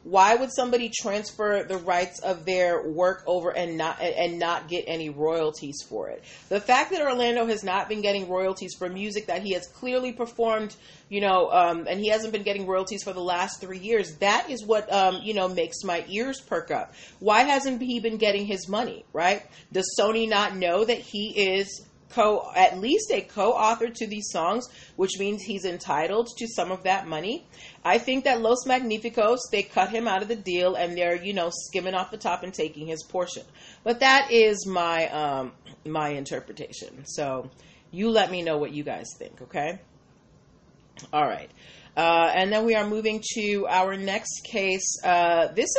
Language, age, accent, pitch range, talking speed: English, 30-49, American, 175-230 Hz, 195 wpm